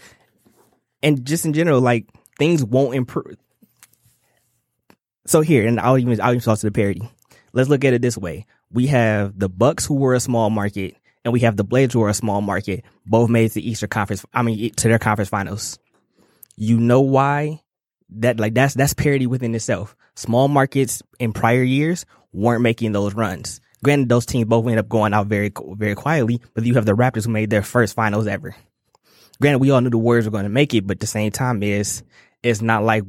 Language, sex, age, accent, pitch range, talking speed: English, male, 20-39, American, 110-125 Hz, 210 wpm